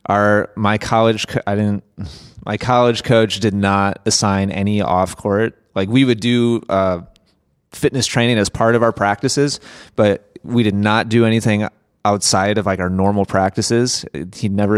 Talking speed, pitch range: 160 wpm, 95-115 Hz